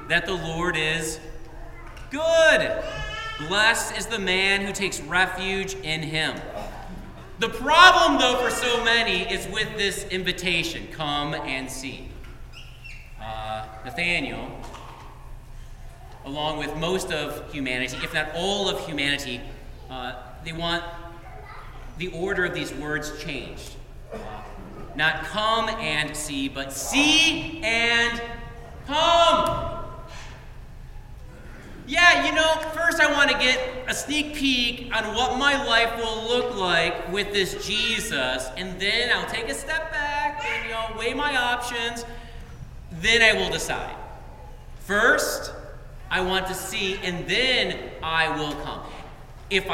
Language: English